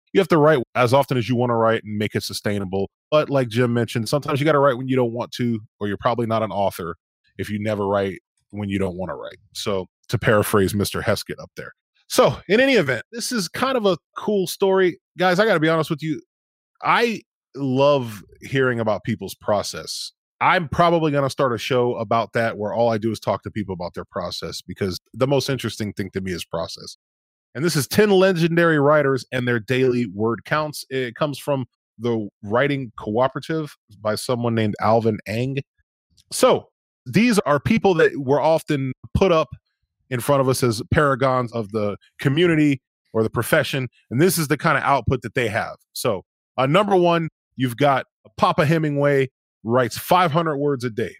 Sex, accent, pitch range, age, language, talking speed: male, American, 115-155 Hz, 20-39, English, 200 wpm